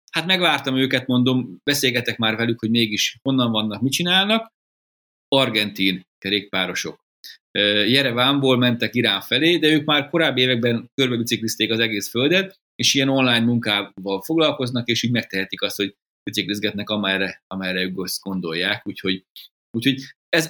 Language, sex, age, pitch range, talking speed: Hungarian, male, 30-49, 115-140 Hz, 140 wpm